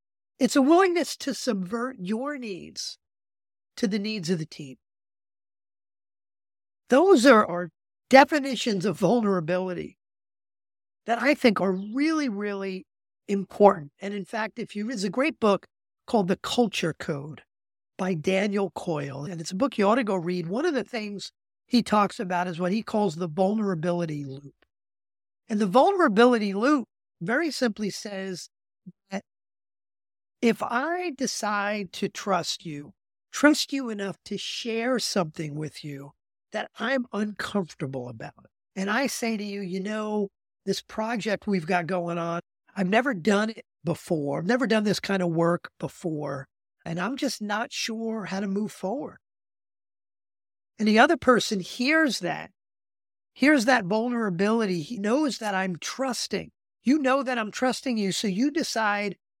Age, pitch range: 50-69, 165-235 Hz